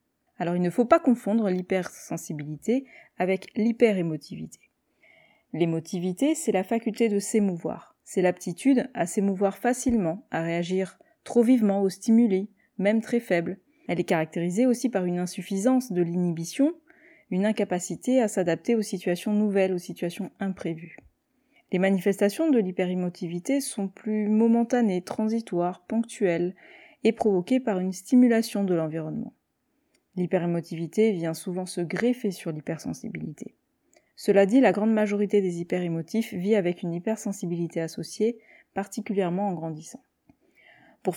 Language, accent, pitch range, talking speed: French, French, 180-235 Hz, 125 wpm